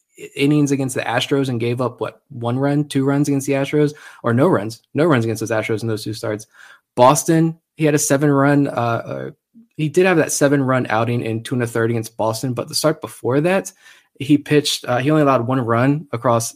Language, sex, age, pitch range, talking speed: English, male, 20-39, 115-145 Hz, 225 wpm